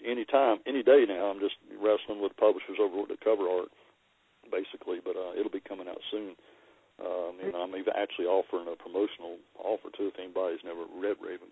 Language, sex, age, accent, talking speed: English, male, 50-69, American, 195 wpm